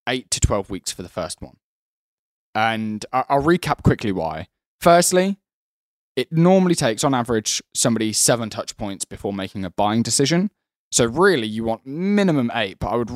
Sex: male